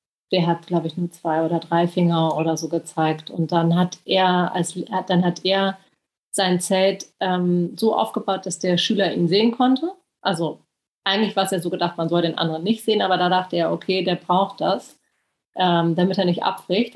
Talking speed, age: 205 wpm, 30-49